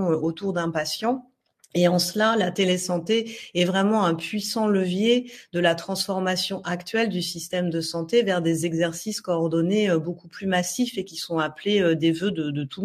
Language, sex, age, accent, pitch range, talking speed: French, female, 30-49, French, 160-195 Hz, 175 wpm